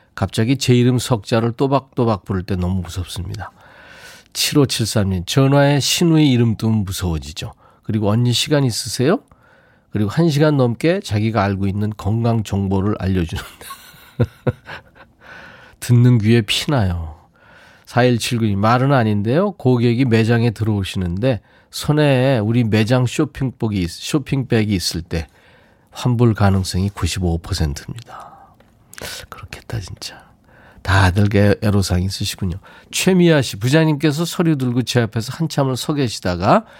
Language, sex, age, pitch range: Korean, male, 40-59, 100-135 Hz